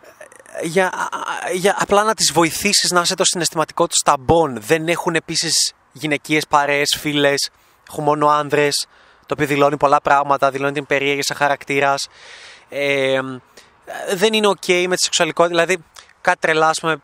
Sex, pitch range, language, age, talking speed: male, 145-180 Hz, Greek, 20-39, 150 wpm